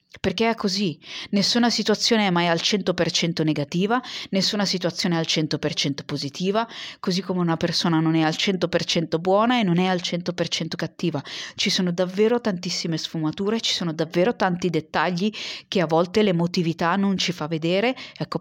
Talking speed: 165 wpm